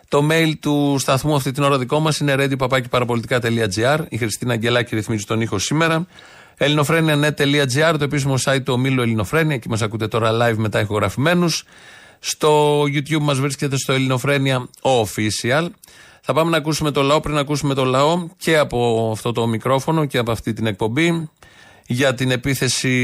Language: Greek